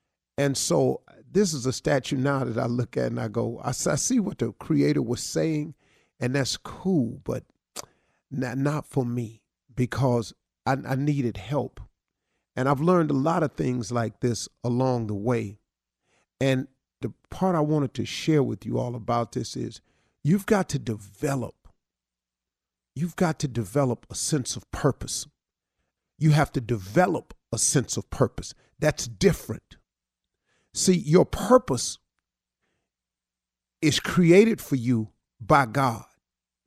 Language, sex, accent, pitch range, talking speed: English, male, American, 110-160 Hz, 145 wpm